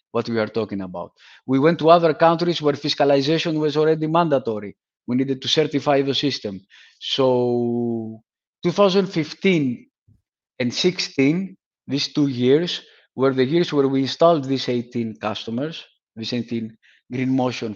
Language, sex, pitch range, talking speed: English, male, 120-150 Hz, 140 wpm